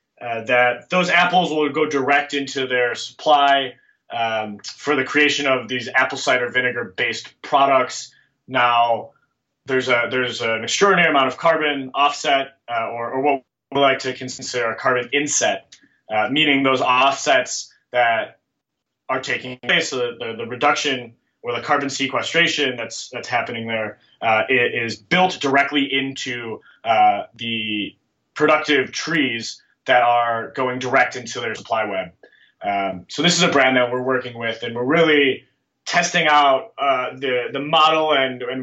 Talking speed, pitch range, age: 155 wpm, 125-145 Hz, 20-39